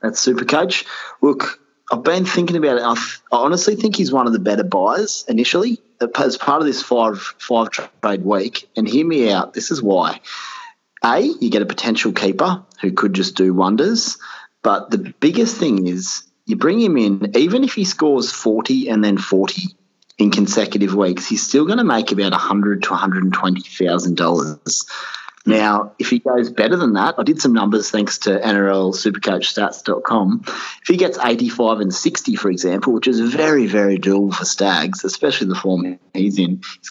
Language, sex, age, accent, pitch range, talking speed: English, male, 30-49, Australian, 95-135 Hz, 180 wpm